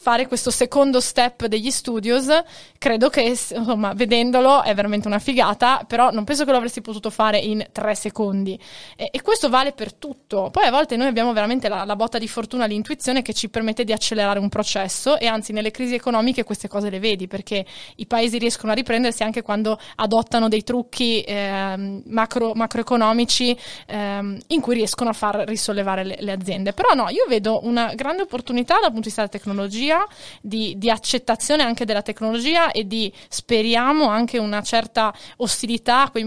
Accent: native